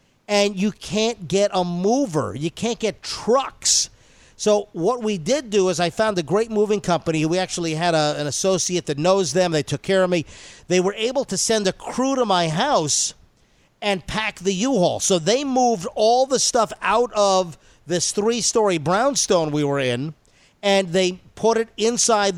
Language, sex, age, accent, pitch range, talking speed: English, male, 50-69, American, 170-215 Hz, 180 wpm